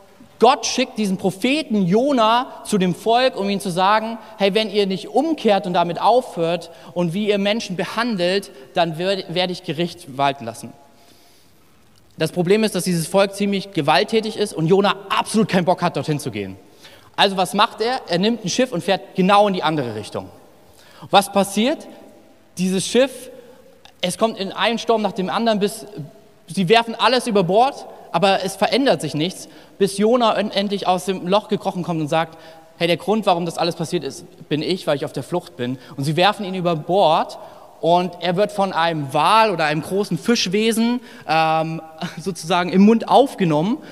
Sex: male